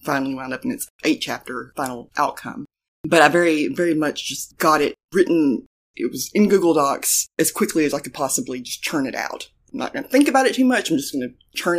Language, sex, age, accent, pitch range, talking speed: English, female, 20-39, American, 135-165 Hz, 240 wpm